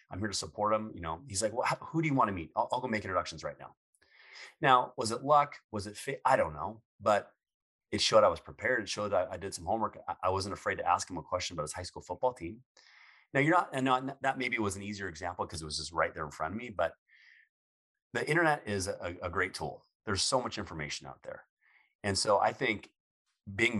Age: 30-49